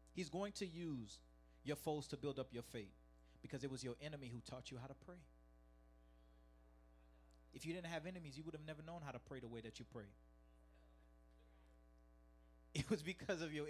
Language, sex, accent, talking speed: English, male, American, 195 wpm